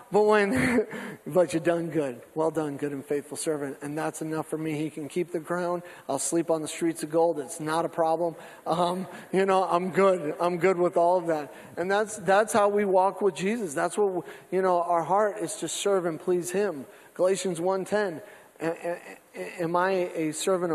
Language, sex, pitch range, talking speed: English, male, 160-210 Hz, 205 wpm